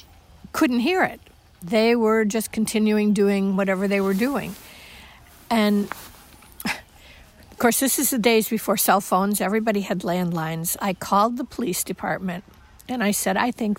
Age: 50-69